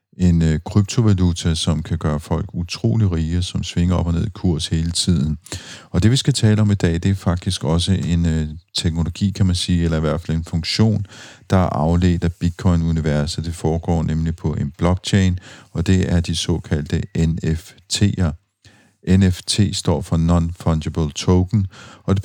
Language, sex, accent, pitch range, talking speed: Danish, male, native, 80-95 Hz, 180 wpm